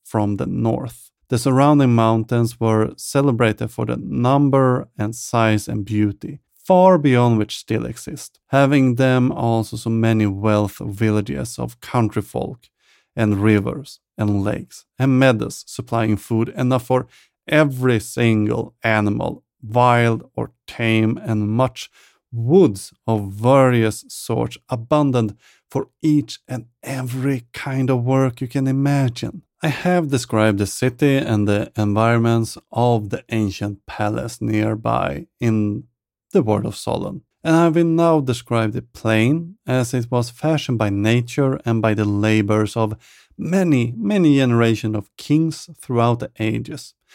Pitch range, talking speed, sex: 110-135 Hz, 135 wpm, male